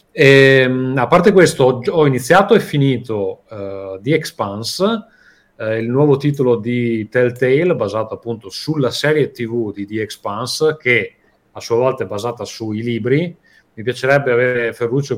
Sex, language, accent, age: male, Italian, native, 30-49